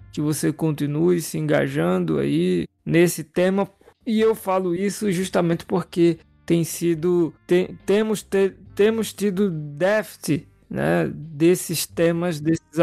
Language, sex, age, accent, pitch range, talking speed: Portuguese, male, 20-39, Brazilian, 150-180 Hz, 120 wpm